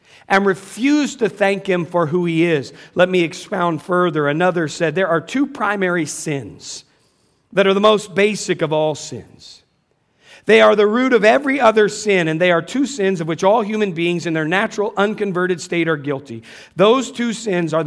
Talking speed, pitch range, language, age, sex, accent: 190 wpm, 165-210 Hz, English, 50-69, male, American